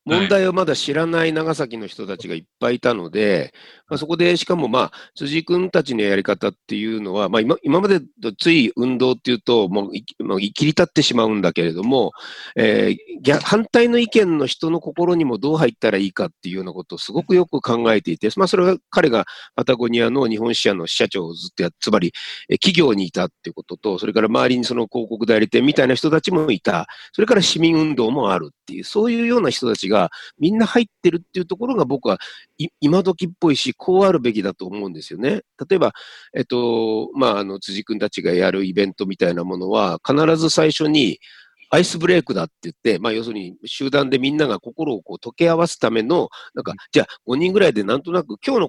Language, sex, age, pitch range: Japanese, male, 40-59, 110-180 Hz